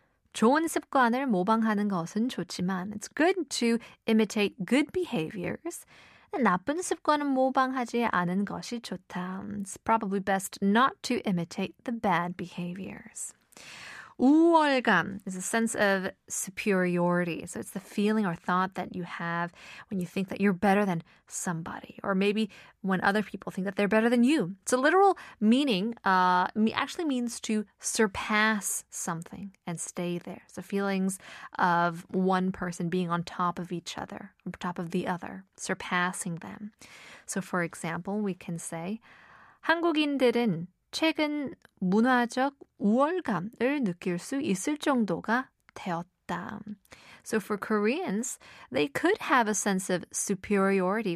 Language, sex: Korean, female